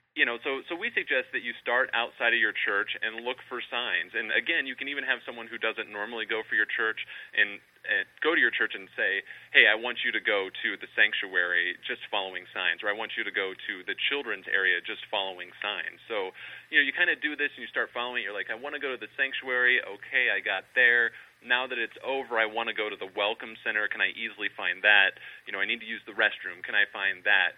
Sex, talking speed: male, 260 wpm